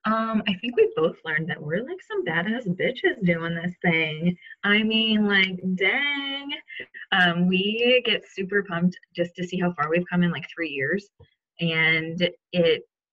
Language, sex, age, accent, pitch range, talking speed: English, female, 20-39, American, 165-190 Hz, 165 wpm